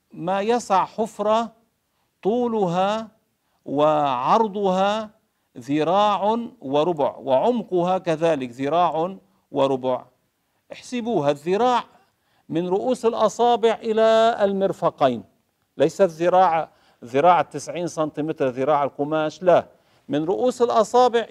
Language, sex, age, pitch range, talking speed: Arabic, male, 50-69, 145-210 Hz, 80 wpm